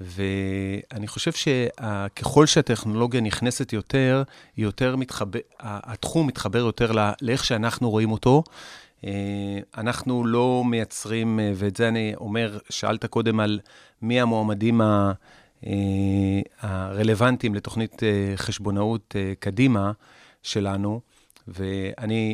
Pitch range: 100-120 Hz